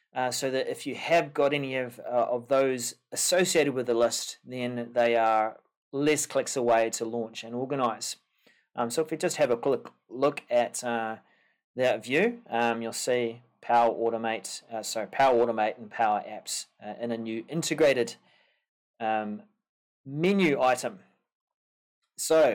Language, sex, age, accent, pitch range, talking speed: English, male, 30-49, Australian, 120-160 Hz, 160 wpm